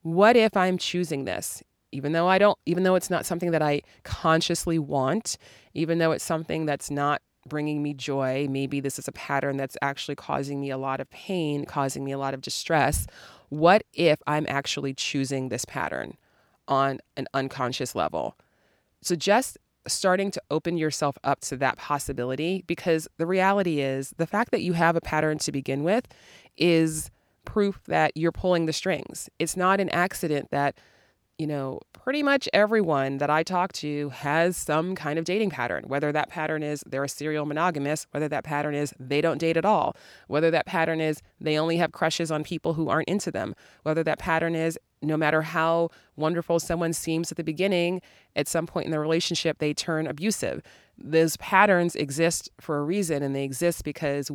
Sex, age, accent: female, 30-49, American